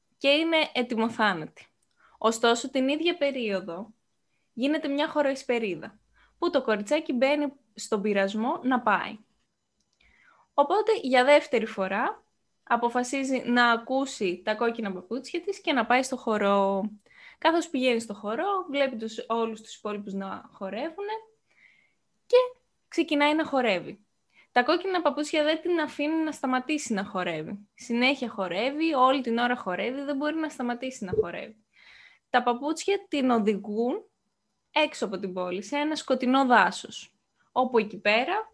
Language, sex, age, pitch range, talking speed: Greek, female, 20-39, 230-305 Hz, 135 wpm